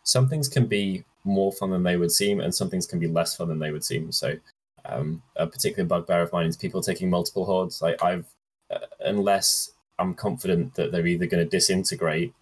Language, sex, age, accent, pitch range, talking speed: English, male, 10-29, British, 80-100 Hz, 215 wpm